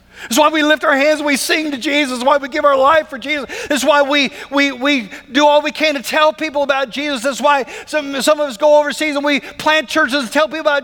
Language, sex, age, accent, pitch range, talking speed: English, male, 50-69, American, 205-285 Hz, 270 wpm